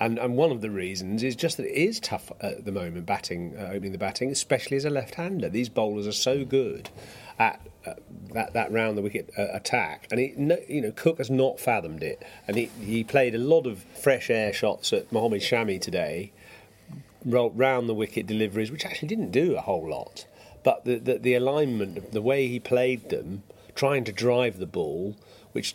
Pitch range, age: 110-135 Hz, 40-59